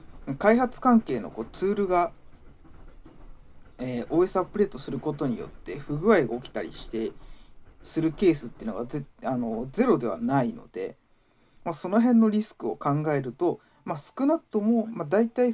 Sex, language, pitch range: male, Japanese, 130-215 Hz